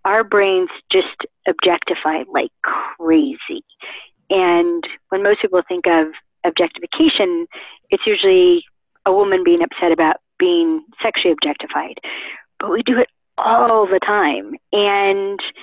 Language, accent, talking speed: English, American, 120 wpm